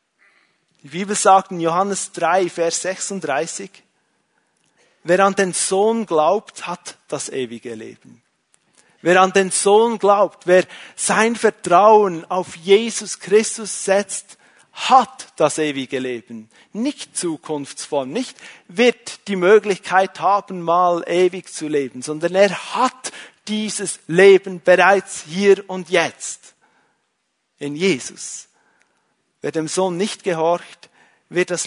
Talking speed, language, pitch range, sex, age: 115 wpm, German, 155-195 Hz, male, 40-59